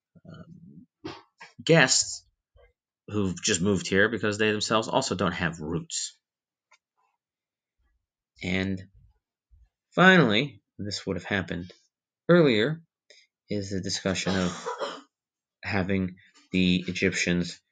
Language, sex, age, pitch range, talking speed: English, male, 30-49, 90-115 Hz, 90 wpm